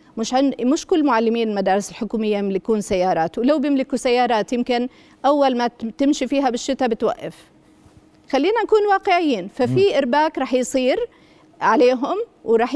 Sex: female